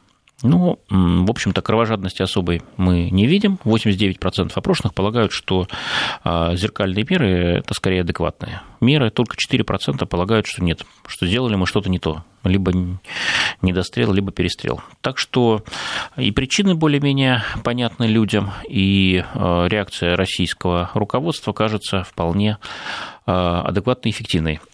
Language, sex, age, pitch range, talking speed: Russian, male, 30-49, 90-110 Hz, 120 wpm